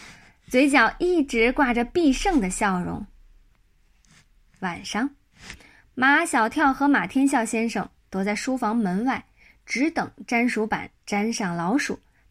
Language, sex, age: Chinese, female, 20-39